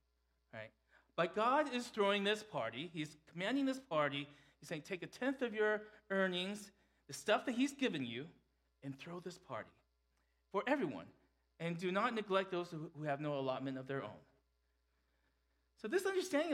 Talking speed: 165 wpm